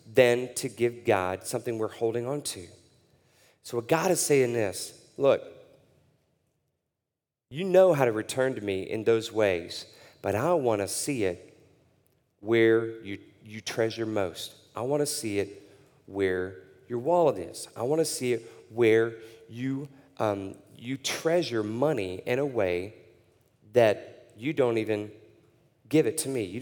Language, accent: English, American